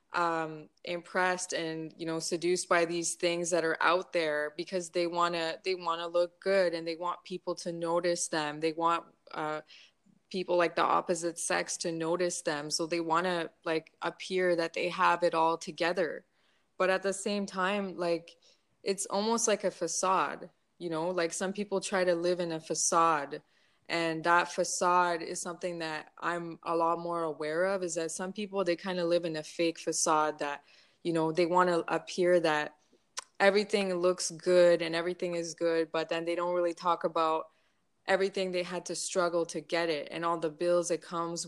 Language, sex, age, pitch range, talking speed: English, female, 20-39, 165-180 Hz, 195 wpm